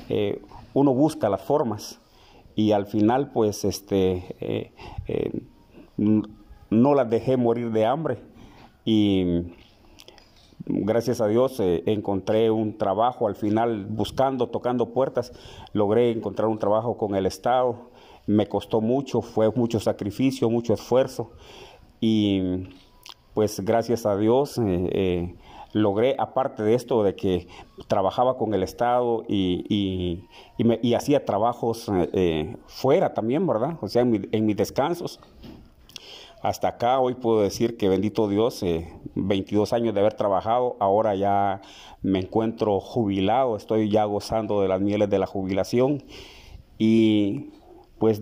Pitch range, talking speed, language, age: 100-120 Hz, 135 wpm, Spanish, 50-69